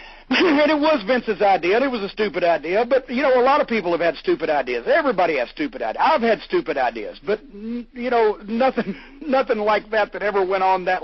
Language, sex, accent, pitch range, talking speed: English, male, American, 185-245 Hz, 235 wpm